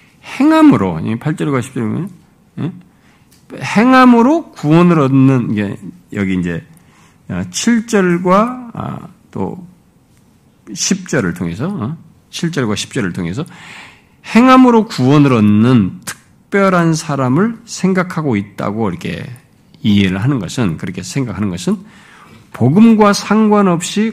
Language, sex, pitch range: Korean, male, 120-200 Hz